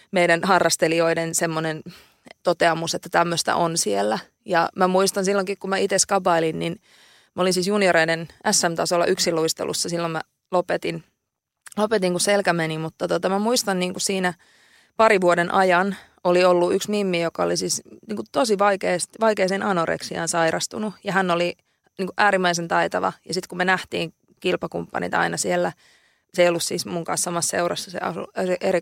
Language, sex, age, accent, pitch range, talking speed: Finnish, female, 20-39, native, 170-195 Hz, 160 wpm